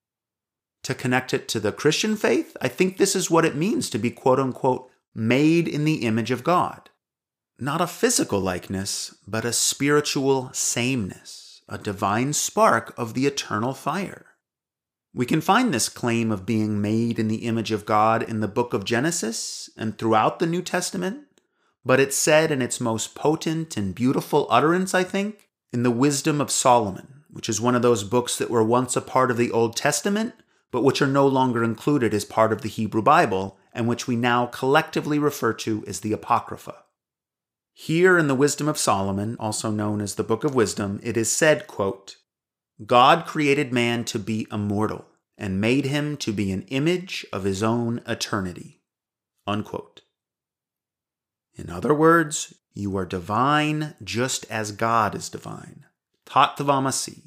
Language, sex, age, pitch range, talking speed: English, male, 30-49, 110-150 Hz, 170 wpm